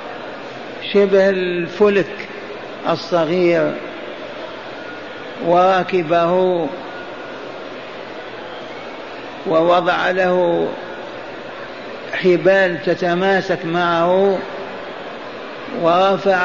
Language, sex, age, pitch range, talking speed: Arabic, male, 60-79, 170-190 Hz, 35 wpm